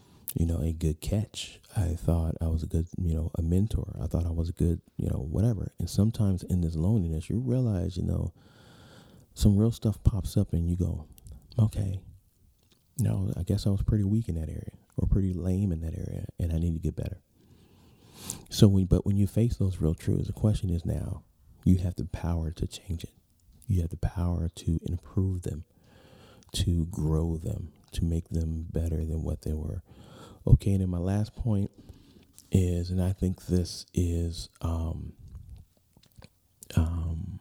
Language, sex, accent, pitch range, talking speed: English, male, American, 85-105 Hz, 190 wpm